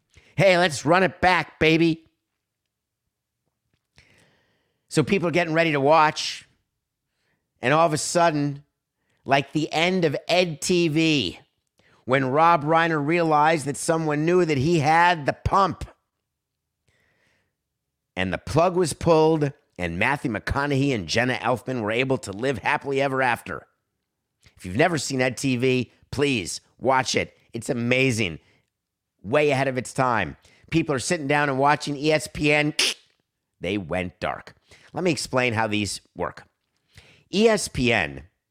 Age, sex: 50-69, male